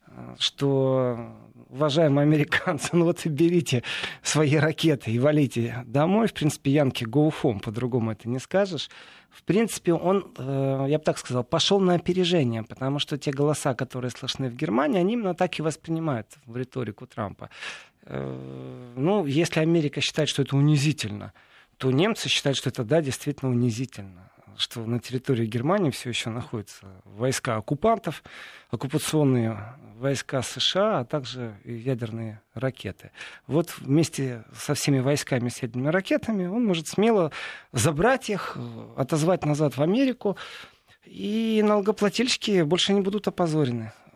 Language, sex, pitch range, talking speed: Russian, male, 125-170 Hz, 135 wpm